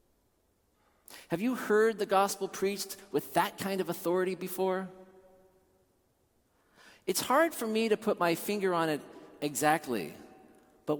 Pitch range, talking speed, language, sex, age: 170-225 Hz, 130 wpm, English, male, 40-59